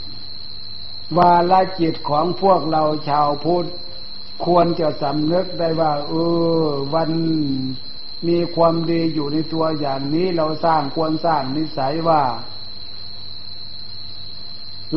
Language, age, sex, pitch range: Thai, 60-79, male, 135-165 Hz